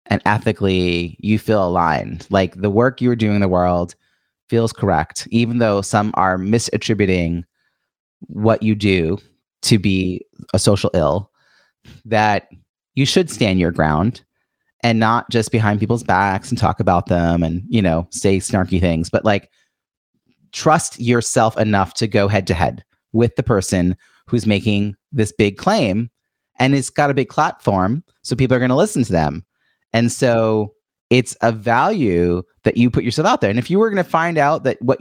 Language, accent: English, American